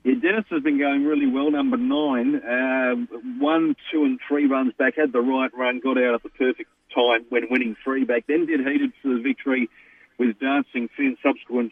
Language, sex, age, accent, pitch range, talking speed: English, male, 40-59, Australian, 120-145 Hz, 210 wpm